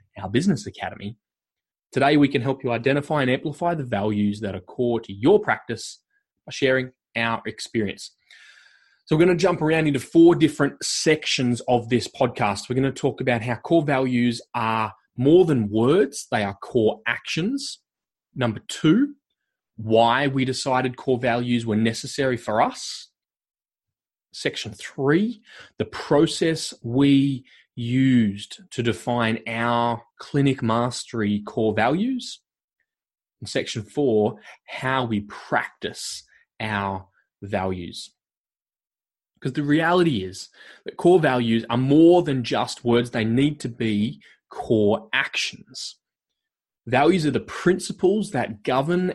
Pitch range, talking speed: 115-155 Hz, 130 wpm